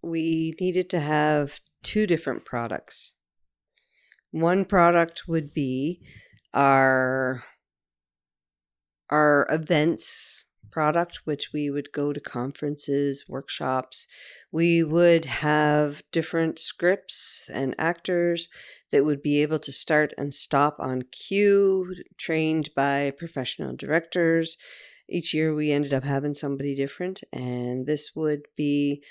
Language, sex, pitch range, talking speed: English, female, 140-170 Hz, 115 wpm